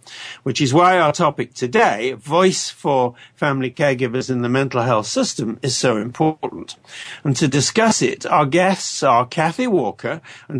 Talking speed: 160 wpm